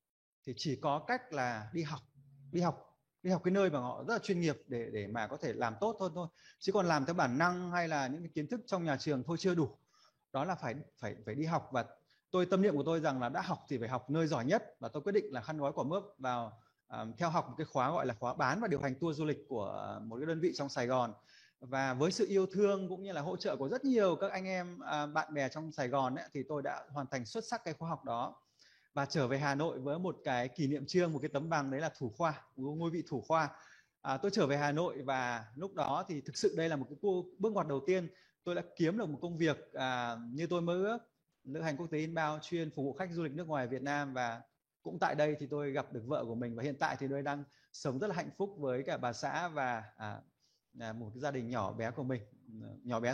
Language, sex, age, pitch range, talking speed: Vietnamese, male, 20-39, 130-170 Hz, 275 wpm